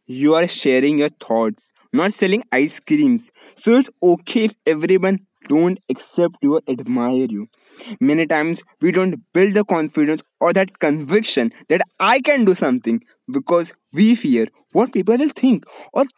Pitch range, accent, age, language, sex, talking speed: 150-235 Hz, Indian, 20-39, English, male, 160 wpm